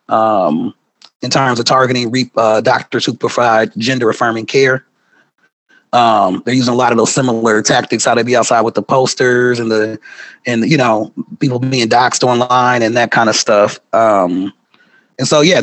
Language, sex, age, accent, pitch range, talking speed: English, male, 30-49, American, 130-170 Hz, 175 wpm